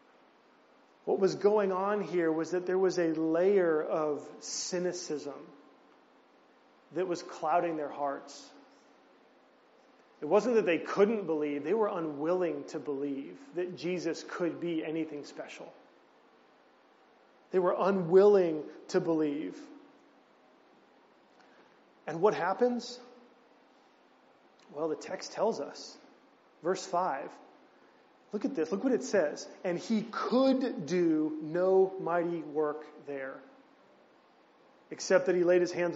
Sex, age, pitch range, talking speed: male, 30-49, 155-190 Hz, 120 wpm